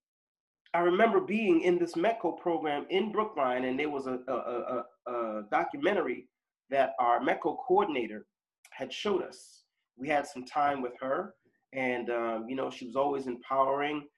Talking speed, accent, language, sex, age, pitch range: 160 wpm, American, English, male, 30-49, 130-195 Hz